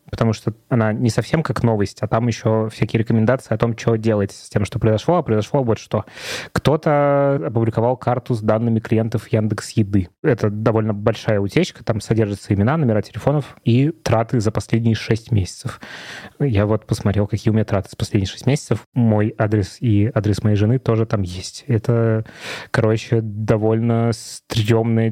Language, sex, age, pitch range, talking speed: Russian, male, 20-39, 110-125 Hz, 165 wpm